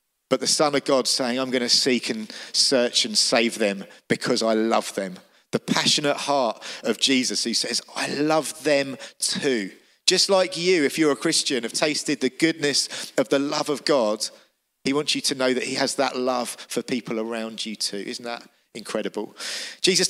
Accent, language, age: British, English, 40-59